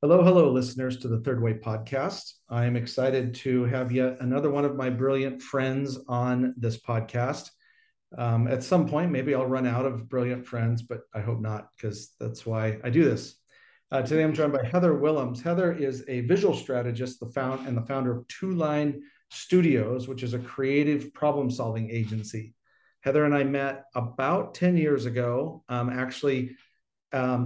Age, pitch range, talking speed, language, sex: 40-59, 120-145 Hz, 175 wpm, English, male